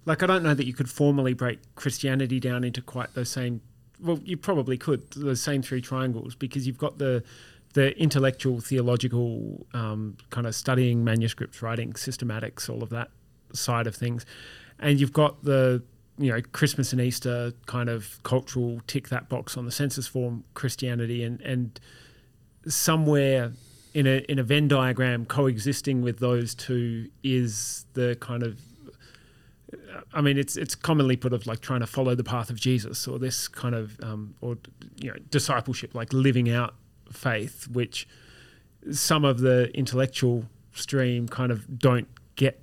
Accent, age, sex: Australian, 30-49, male